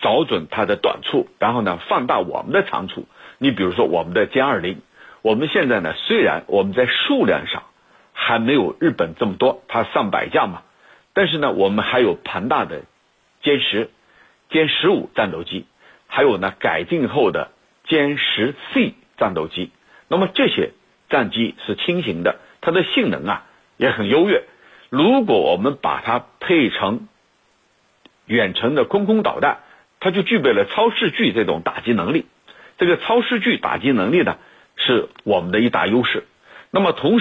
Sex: male